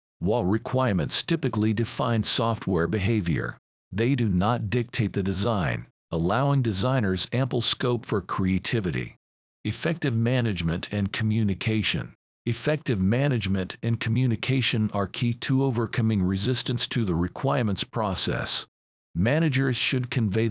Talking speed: 110 wpm